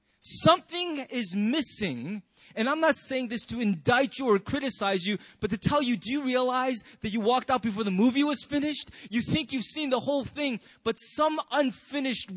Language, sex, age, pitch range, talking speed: English, male, 20-39, 195-255 Hz, 195 wpm